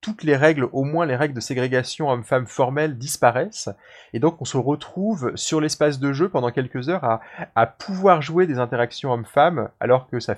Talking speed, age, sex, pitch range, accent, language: 195 wpm, 20-39, male, 115-145 Hz, French, French